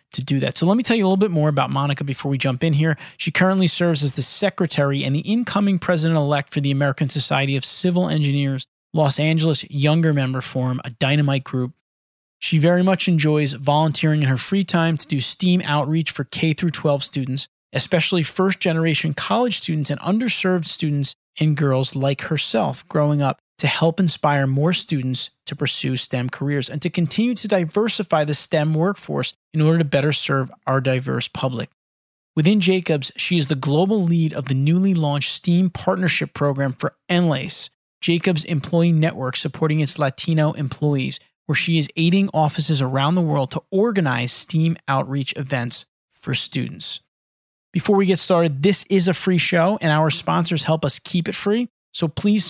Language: English